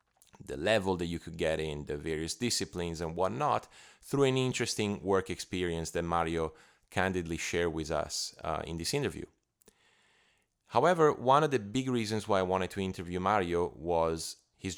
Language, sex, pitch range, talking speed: English, male, 80-100 Hz, 165 wpm